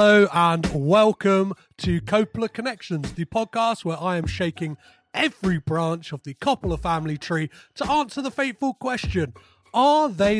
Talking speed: 150 wpm